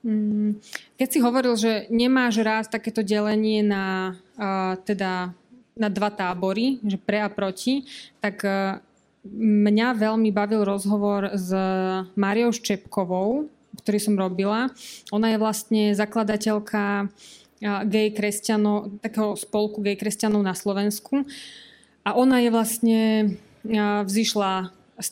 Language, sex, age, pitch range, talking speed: Slovak, female, 20-39, 205-220 Hz, 110 wpm